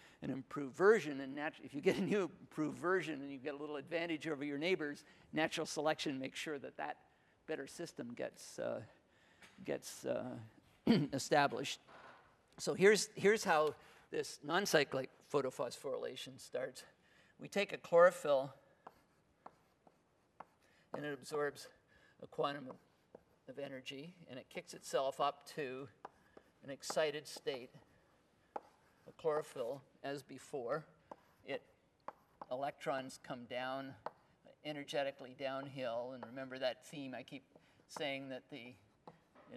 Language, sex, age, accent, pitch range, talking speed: English, male, 50-69, American, 135-175 Hz, 125 wpm